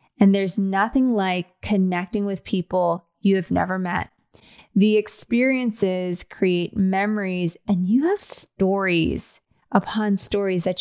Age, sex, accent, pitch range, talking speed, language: 30-49, female, American, 185-235 Hz, 120 wpm, English